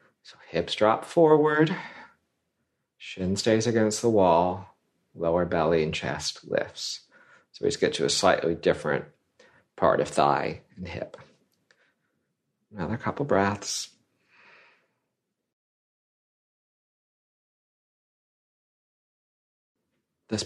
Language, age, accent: English, 40-59, American